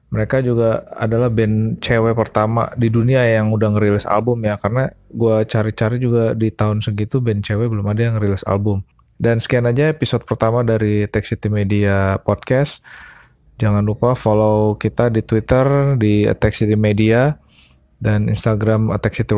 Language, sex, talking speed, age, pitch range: Indonesian, male, 160 wpm, 20-39, 105-120 Hz